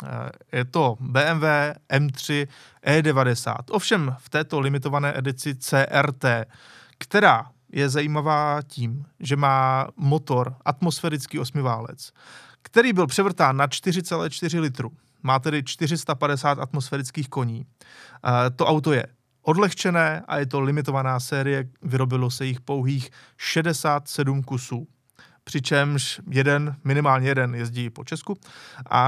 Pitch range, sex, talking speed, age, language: 135-160 Hz, male, 110 wpm, 20-39, Czech